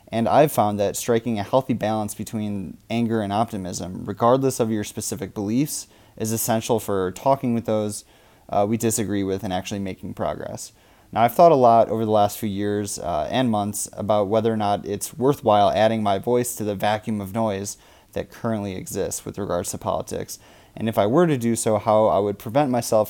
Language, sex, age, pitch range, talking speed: English, male, 20-39, 100-115 Hz, 200 wpm